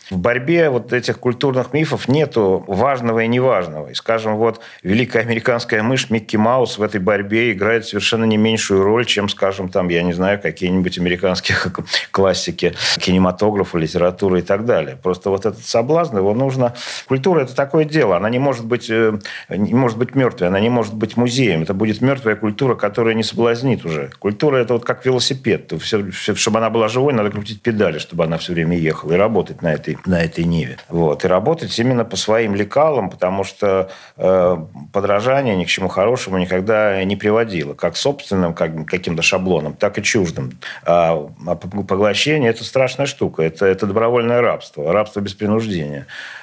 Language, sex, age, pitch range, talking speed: Russian, male, 40-59, 95-120 Hz, 170 wpm